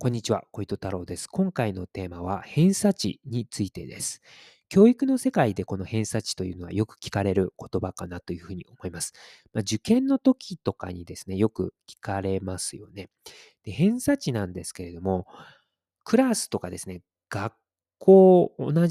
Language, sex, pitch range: Japanese, male, 95-160 Hz